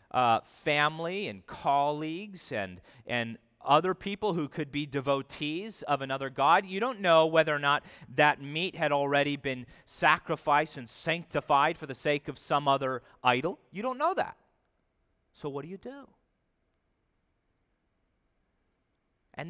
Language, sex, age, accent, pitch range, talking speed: English, male, 40-59, American, 110-160 Hz, 140 wpm